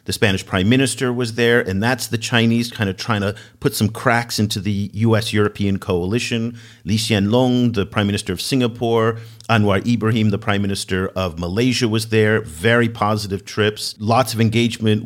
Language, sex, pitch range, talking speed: English, male, 100-120 Hz, 170 wpm